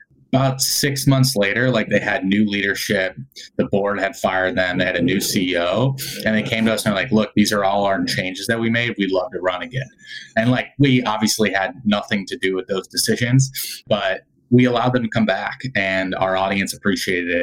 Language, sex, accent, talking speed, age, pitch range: English, male, American, 215 wpm, 20-39, 95-130 Hz